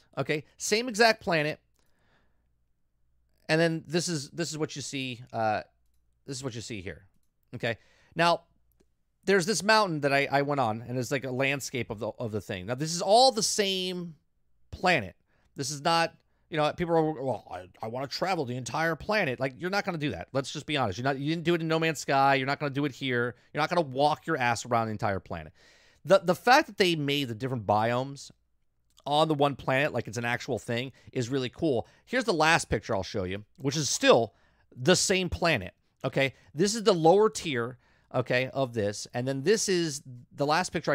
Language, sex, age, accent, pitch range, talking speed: English, male, 30-49, American, 120-170 Hz, 220 wpm